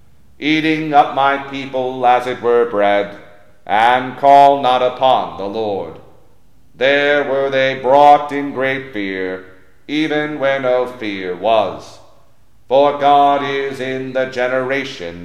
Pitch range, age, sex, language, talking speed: 120-145 Hz, 40-59, male, English, 125 wpm